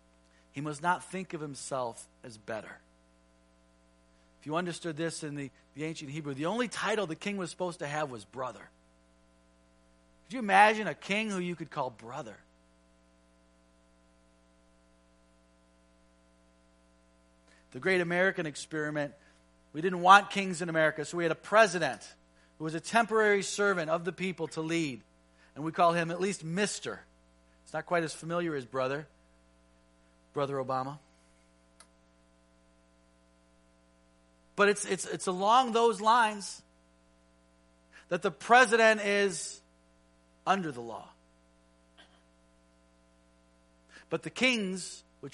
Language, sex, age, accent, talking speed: English, male, 40-59, American, 130 wpm